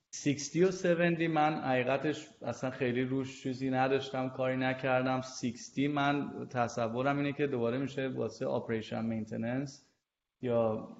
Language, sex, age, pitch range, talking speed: Persian, male, 20-39, 115-130 Hz, 125 wpm